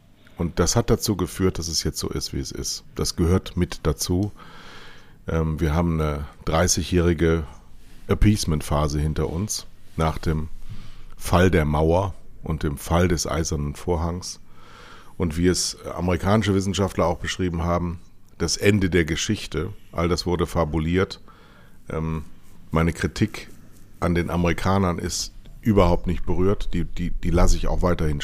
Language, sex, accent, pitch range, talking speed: German, male, German, 80-95 Hz, 140 wpm